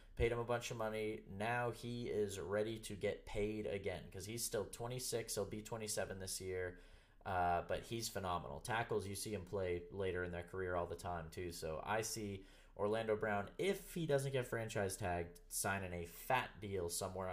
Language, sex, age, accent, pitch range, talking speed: English, male, 20-39, American, 95-110 Hz, 195 wpm